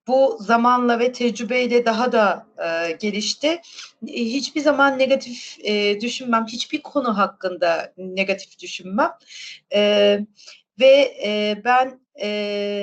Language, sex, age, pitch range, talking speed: Turkish, female, 40-59, 195-265 Hz, 85 wpm